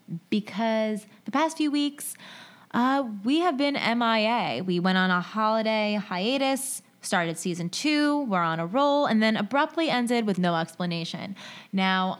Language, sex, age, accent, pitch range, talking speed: English, female, 20-39, American, 180-225 Hz, 150 wpm